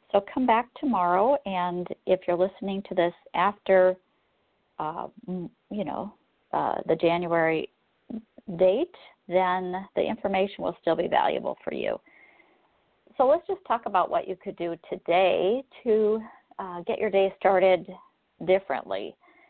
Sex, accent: female, American